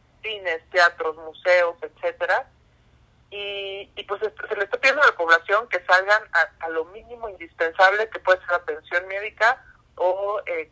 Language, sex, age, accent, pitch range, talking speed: Spanish, male, 40-59, Mexican, 165-215 Hz, 160 wpm